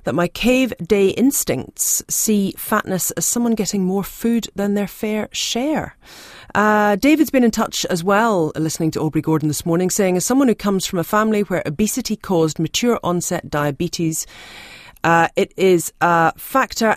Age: 40-59